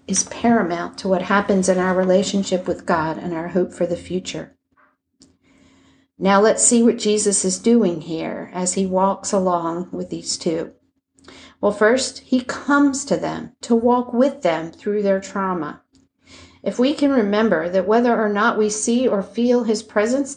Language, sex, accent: English, female, American